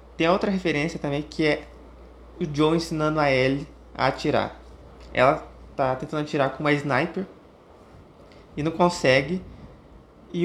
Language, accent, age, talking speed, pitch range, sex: Portuguese, Brazilian, 20-39, 140 wpm, 125-160 Hz, male